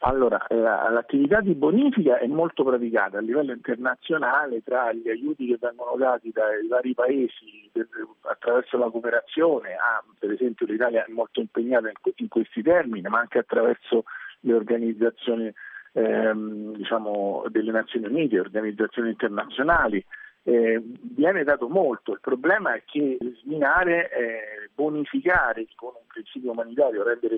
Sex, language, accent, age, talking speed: male, Italian, native, 50-69, 125 wpm